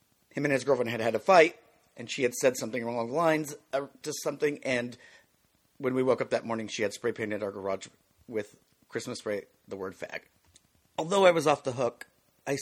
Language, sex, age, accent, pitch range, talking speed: English, male, 40-59, American, 115-145 Hz, 210 wpm